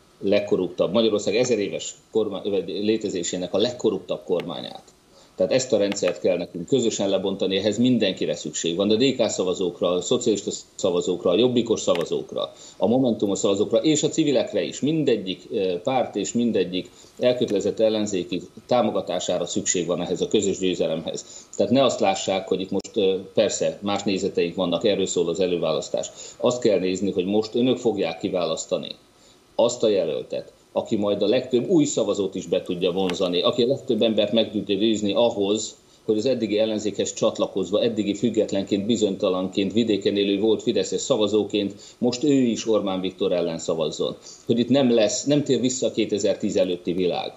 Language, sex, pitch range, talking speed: Hungarian, male, 100-125 Hz, 155 wpm